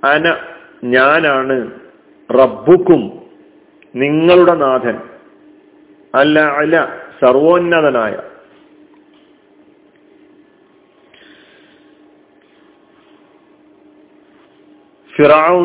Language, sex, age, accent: Malayalam, male, 50-69, native